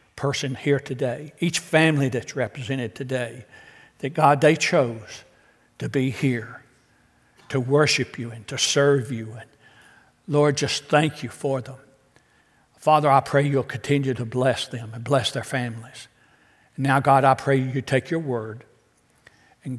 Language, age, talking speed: English, 60-79, 150 wpm